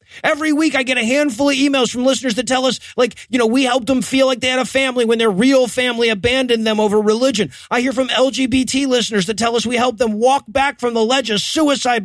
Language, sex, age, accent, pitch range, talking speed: English, male, 30-49, American, 230-265 Hz, 255 wpm